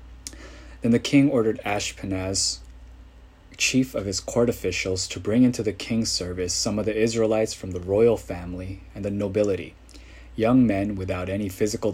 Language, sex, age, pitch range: Korean, male, 20-39, 90-110 Hz